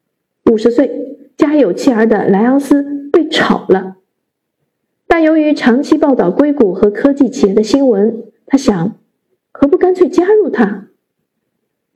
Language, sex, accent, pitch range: Chinese, female, native, 220-270 Hz